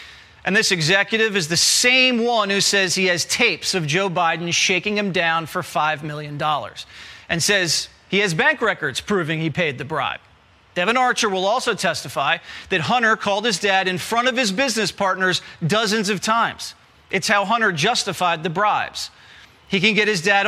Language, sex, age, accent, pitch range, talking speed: English, male, 40-59, American, 165-205 Hz, 180 wpm